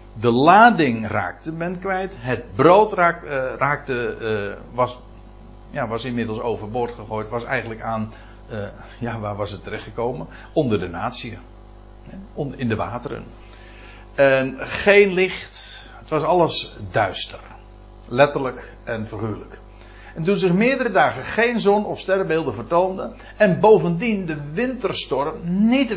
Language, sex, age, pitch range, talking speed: Dutch, male, 60-79, 110-165 Hz, 130 wpm